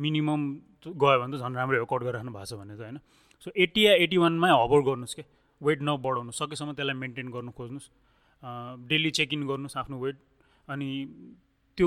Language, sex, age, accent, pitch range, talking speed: English, male, 30-49, Indian, 130-155 Hz, 135 wpm